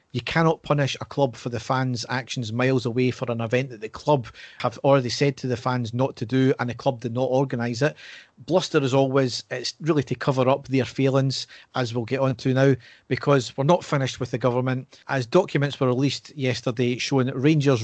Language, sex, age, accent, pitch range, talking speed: English, male, 40-59, British, 125-140 Hz, 215 wpm